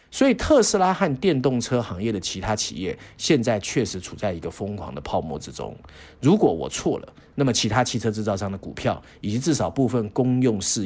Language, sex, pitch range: Chinese, male, 95-120 Hz